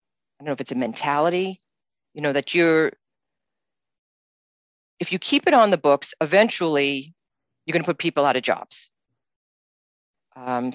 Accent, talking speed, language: American, 155 wpm, English